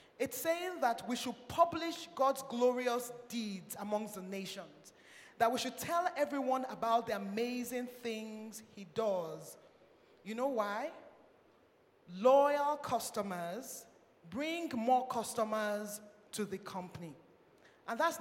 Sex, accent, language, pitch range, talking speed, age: male, Nigerian, English, 210-255 Hz, 120 wpm, 20-39